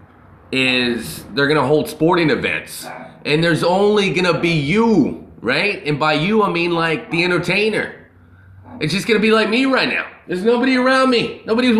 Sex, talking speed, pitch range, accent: male, 190 wpm, 105-175 Hz, American